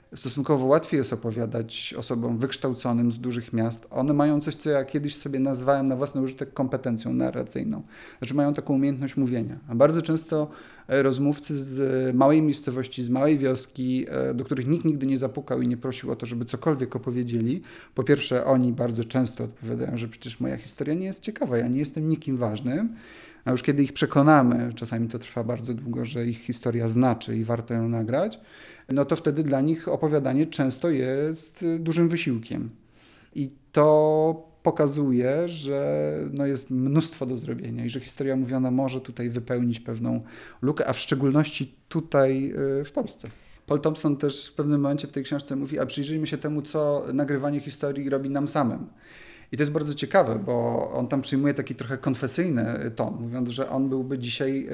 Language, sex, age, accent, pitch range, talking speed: Polish, male, 30-49, native, 125-150 Hz, 175 wpm